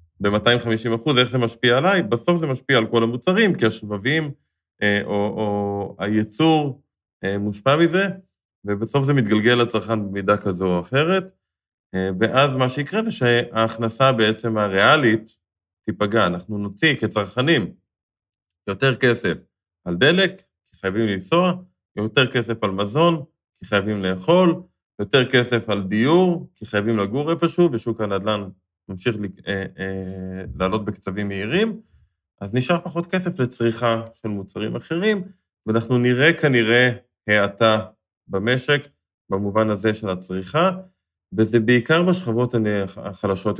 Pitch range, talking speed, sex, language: 100-140 Hz, 120 wpm, male, Hebrew